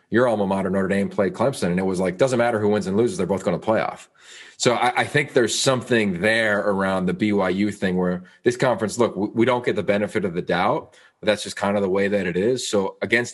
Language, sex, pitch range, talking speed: English, male, 95-120 Hz, 260 wpm